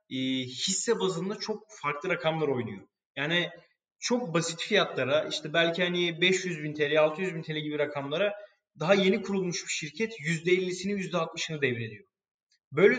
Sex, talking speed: male, 140 wpm